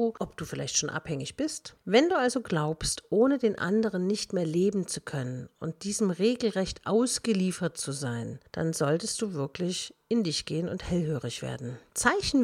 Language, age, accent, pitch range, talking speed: German, 50-69, German, 160-225 Hz, 170 wpm